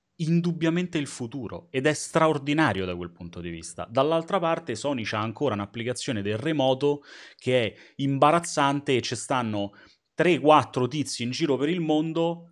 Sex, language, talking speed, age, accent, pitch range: male, Italian, 155 wpm, 30-49, native, 95-145 Hz